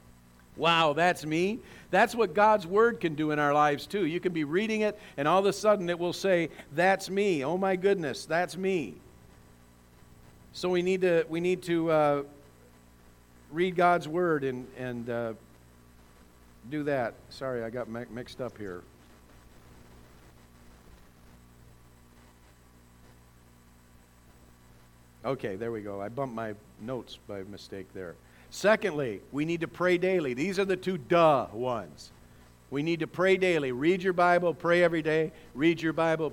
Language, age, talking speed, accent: English, 50-69, 155 wpm, American